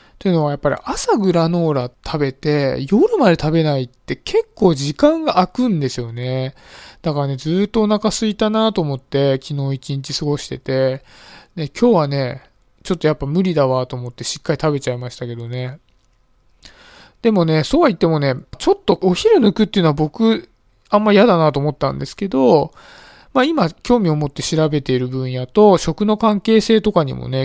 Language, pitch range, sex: Japanese, 135-210 Hz, male